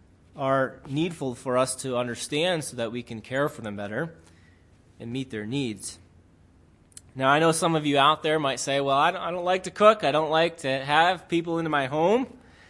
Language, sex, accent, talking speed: English, male, American, 215 wpm